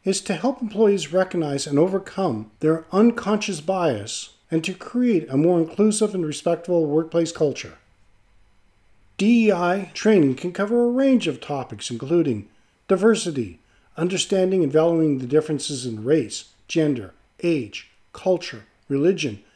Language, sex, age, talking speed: English, male, 50-69, 125 wpm